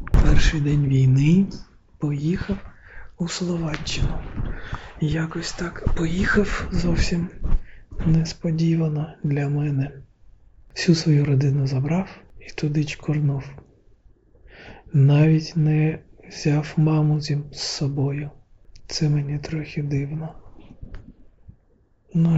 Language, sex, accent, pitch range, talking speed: Ukrainian, male, native, 140-165 Hz, 85 wpm